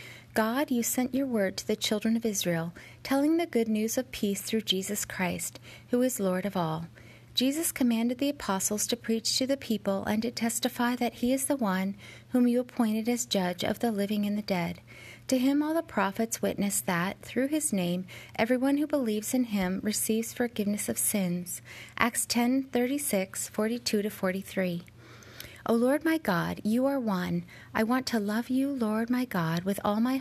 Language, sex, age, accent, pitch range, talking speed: English, female, 30-49, American, 185-245 Hz, 195 wpm